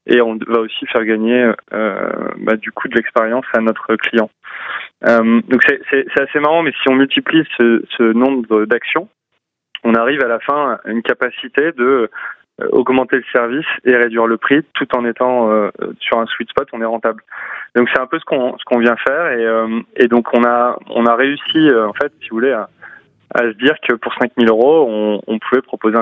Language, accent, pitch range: French, French, 115-125 Hz